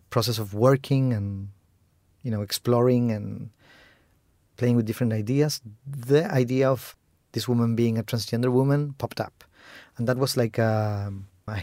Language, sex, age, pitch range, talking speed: English, male, 30-49, 110-130 Hz, 145 wpm